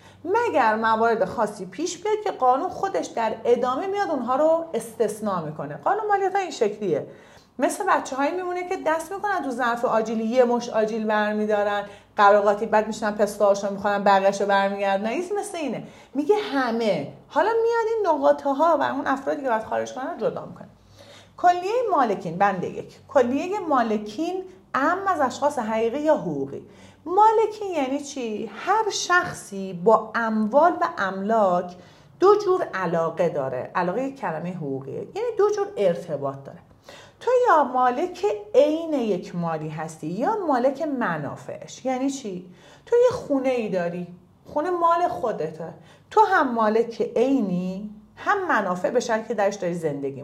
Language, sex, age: Persian, female, 40-59